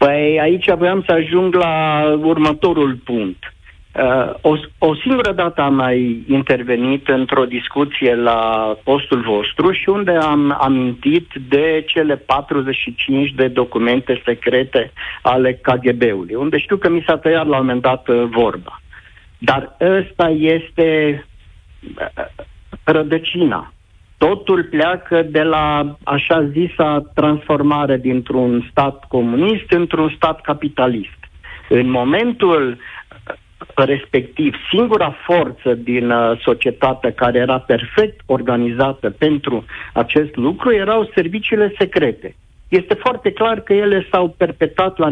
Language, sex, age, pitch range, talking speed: Romanian, male, 50-69, 130-180 Hz, 115 wpm